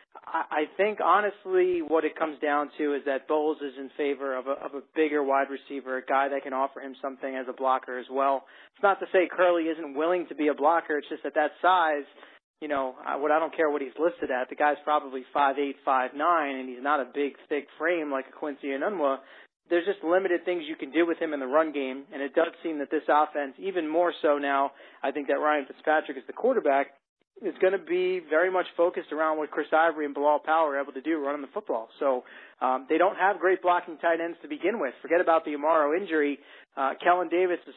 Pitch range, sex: 140-165 Hz, male